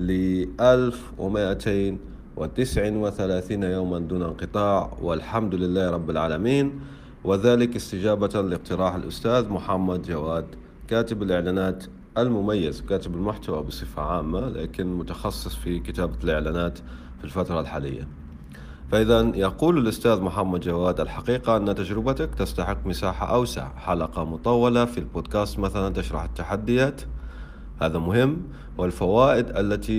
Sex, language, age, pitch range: male, Arabic, 40-59, 80-105 Hz